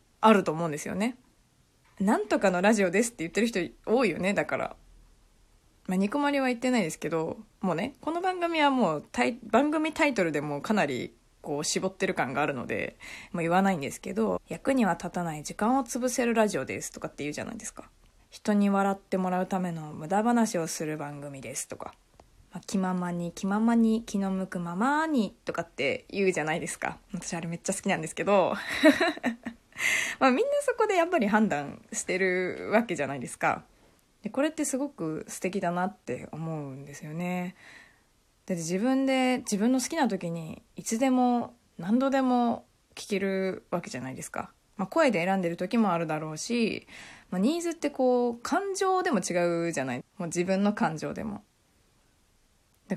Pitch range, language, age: 180-250 Hz, Japanese, 20-39